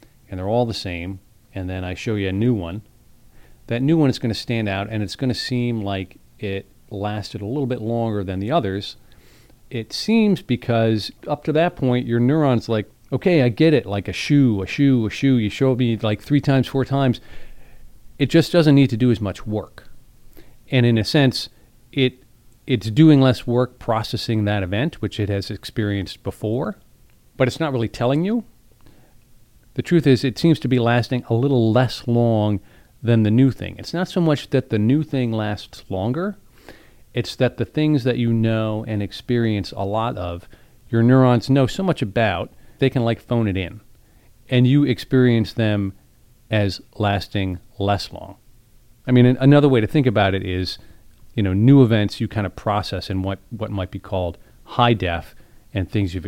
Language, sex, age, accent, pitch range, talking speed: English, male, 40-59, American, 105-130 Hz, 195 wpm